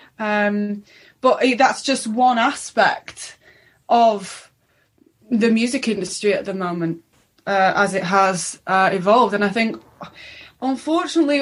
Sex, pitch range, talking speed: female, 200-235 Hz, 120 wpm